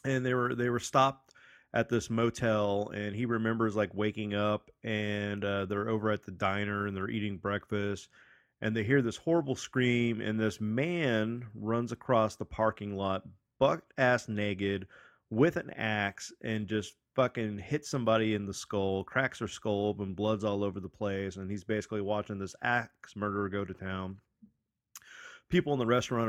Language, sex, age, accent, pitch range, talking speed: English, male, 30-49, American, 100-120 Hz, 175 wpm